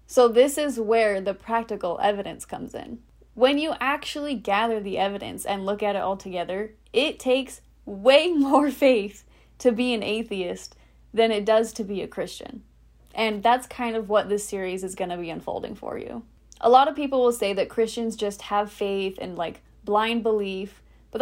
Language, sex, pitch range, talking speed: English, female, 205-250 Hz, 190 wpm